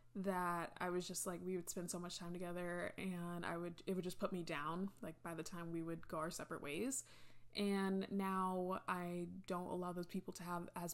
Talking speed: 225 wpm